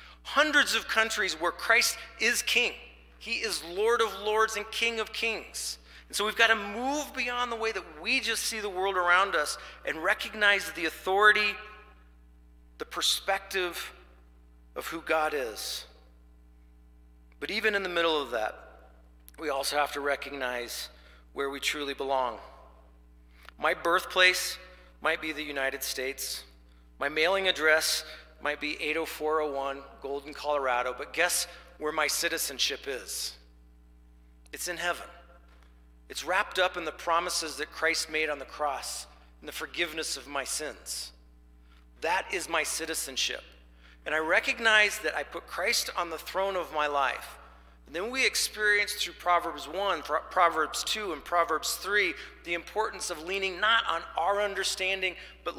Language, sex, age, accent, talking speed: English, male, 40-59, American, 150 wpm